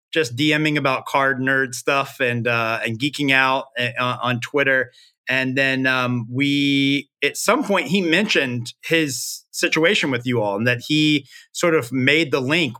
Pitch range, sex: 130-165 Hz, male